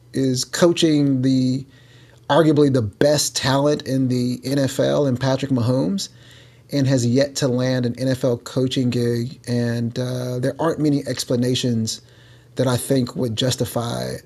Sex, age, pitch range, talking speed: male, 30-49, 125-150 Hz, 140 wpm